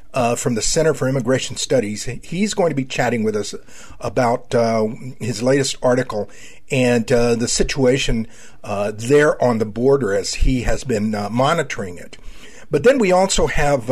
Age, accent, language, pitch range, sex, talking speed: 50-69, American, English, 115-150 Hz, male, 175 wpm